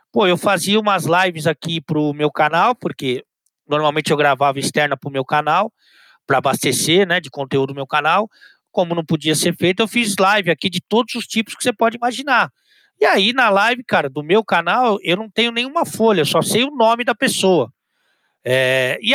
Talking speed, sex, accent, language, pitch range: 195 wpm, male, Brazilian, Portuguese, 155-215 Hz